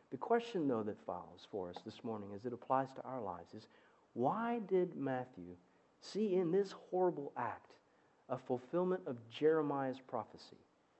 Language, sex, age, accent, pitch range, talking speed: English, male, 40-59, American, 125-150 Hz, 160 wpm